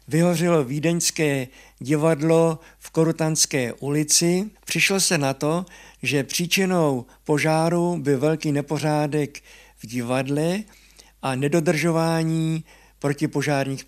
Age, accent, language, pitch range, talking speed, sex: 60-79, native, Czech, 140-165 Hz, 90 wpm, male